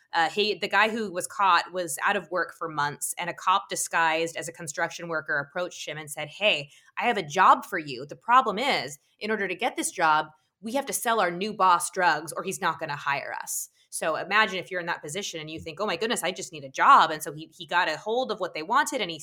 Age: 20-39